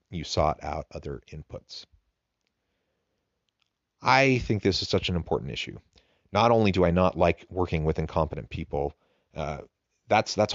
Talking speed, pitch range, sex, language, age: 150 wpm, 80-95 Hz, male, English, 30-49